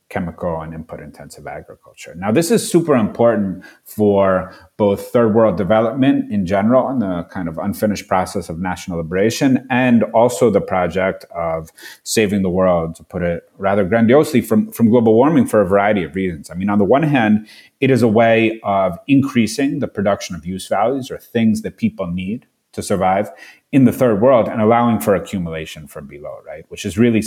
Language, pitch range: English, 95-120 Hz